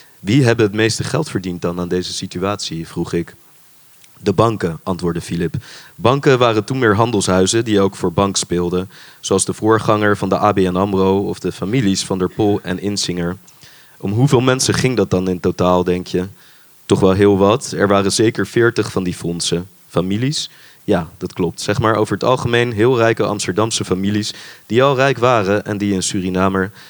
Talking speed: 185 wpm